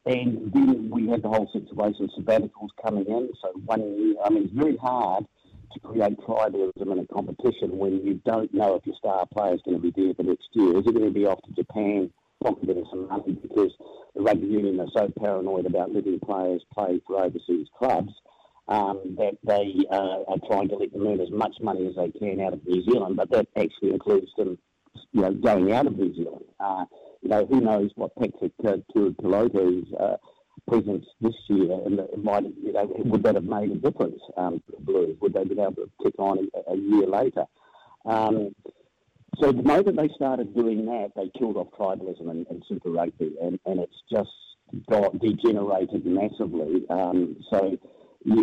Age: 50-69